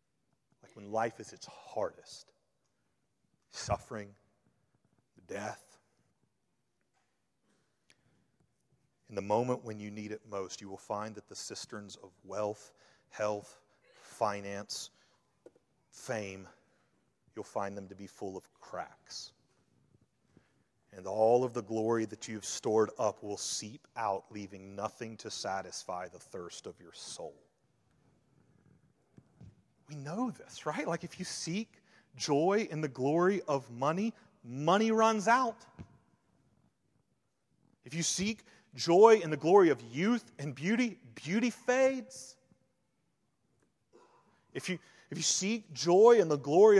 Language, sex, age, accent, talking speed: English, male, 30-49, American, 120 wpm